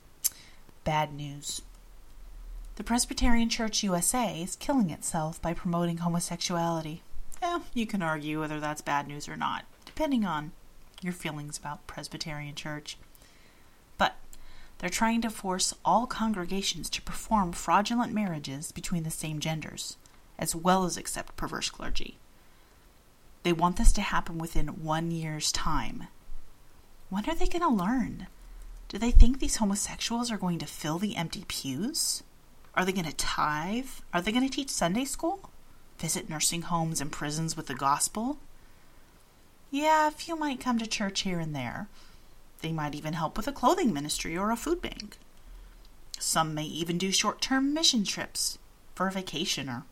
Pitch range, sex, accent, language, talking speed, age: 150-220 Hz, female, American, English, 155 wpm, 30-49